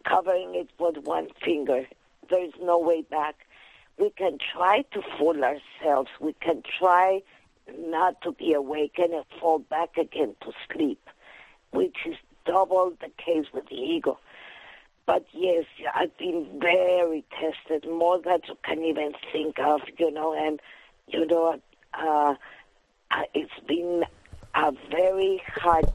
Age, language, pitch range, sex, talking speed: 50-69, English, 155-195 Hz, female, 140 wpm